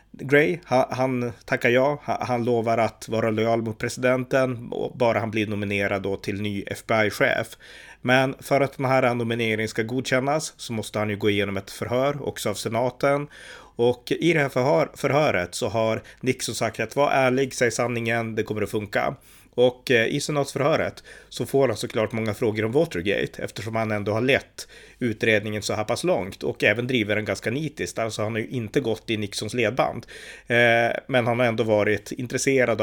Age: 30-49